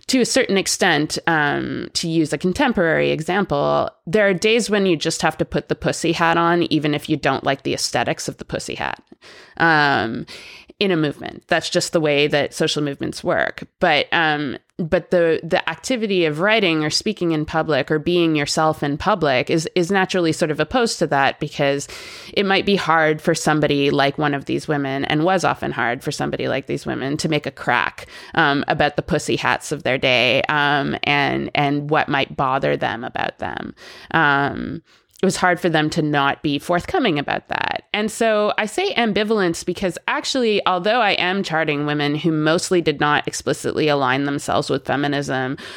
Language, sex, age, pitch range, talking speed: English, female, 20-39, 145-190 Hz, 190 wpm